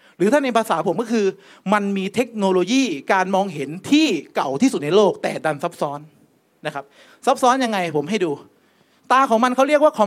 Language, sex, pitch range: Thai, male, 170-245 Hz